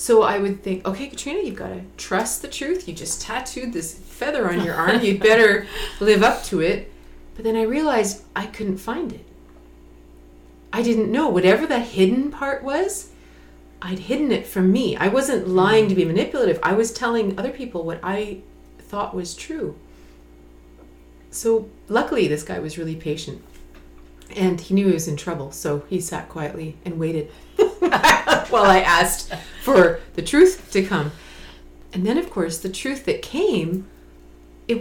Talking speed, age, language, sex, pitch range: 170 wpm, 30-49, English, female, 150-220 Hz